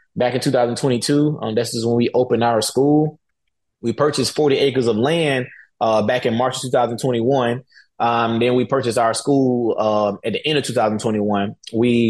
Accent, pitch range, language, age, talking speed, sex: American, 115-130 Hz, English, 20-39, 180 wpm, male